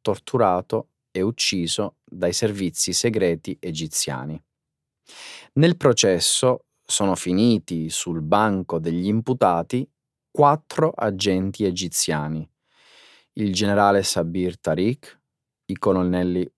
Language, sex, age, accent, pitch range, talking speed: Italian, male, 30-49, native, 85-120 Hz, 85 wpm